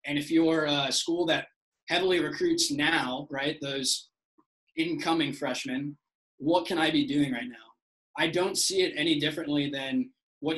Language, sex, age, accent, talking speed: English, male, 20-39, American, 160 wpm